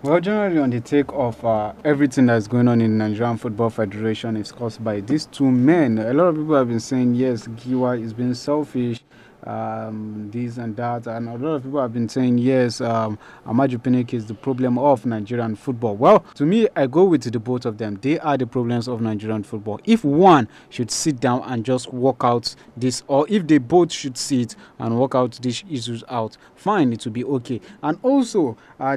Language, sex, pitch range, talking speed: English, male, 120-145 Hz, 210 wpm